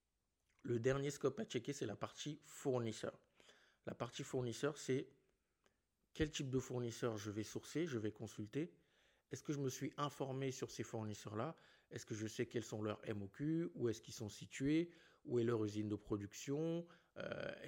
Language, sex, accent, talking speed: French, male, French, 175 wpm